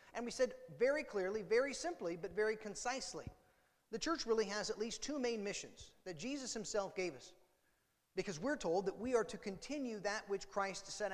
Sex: male